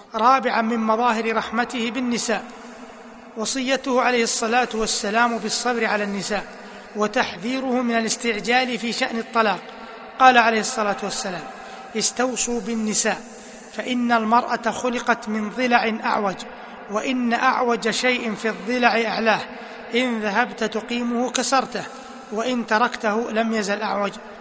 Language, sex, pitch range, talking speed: Arabic, male, 215-245 Hz, 110 wpm